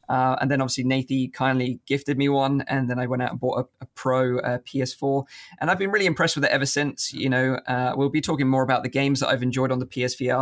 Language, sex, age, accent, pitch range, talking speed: English, male, 20-39, British, 130-145 Hz, 265 wpm